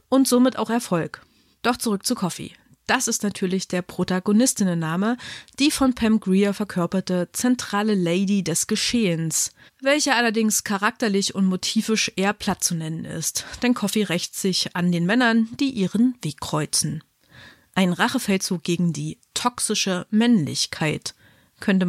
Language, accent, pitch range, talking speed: German, German, 175-225 Hz, 140 wpm